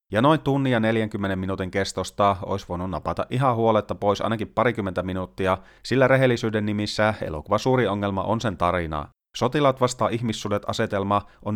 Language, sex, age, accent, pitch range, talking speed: Finnish, male, 30-49, native, 95-120 Hz, 135 wpm